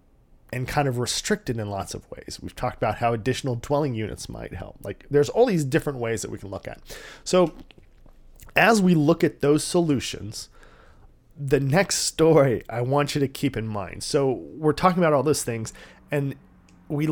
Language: English